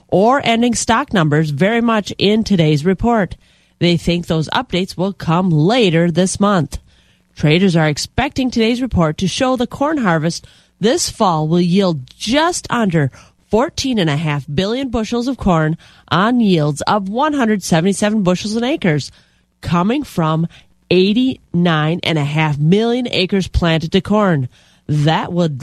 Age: 30-49